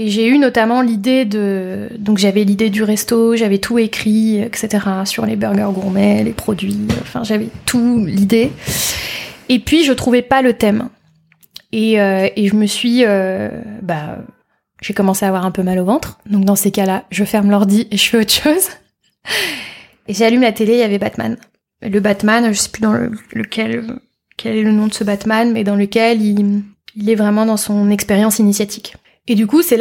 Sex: female